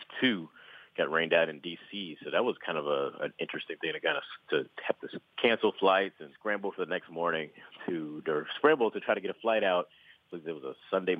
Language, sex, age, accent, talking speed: English, male, 40-59, American, 235 wpm